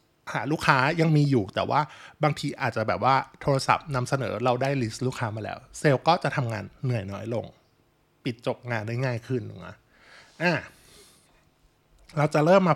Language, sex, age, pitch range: Thai, male, 20-39, 120-155 Hz